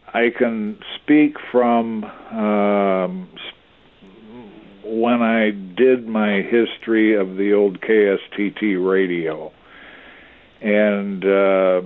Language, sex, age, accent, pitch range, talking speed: English, male, 50-69, American, 95-110 Hz, 80 wpm